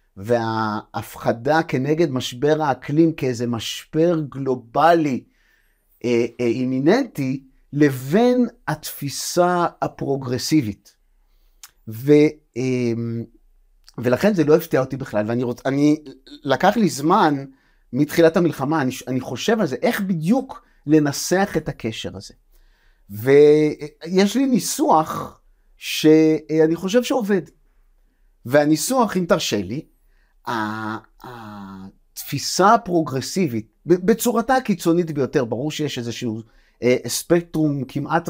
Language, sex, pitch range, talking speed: Hebrew, male, 130-170 Hz, 95 wpm